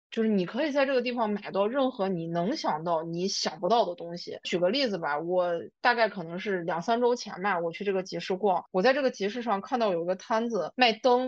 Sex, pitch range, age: female, 185-235 Hz, 20-39